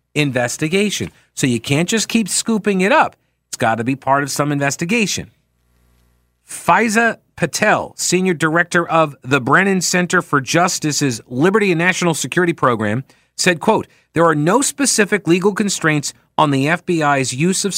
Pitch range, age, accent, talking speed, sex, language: 125-170 Hz, 50-69, American, 150 wpm, male, English